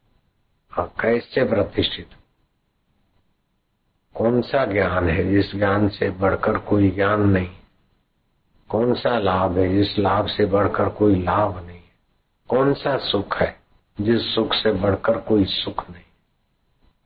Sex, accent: male, native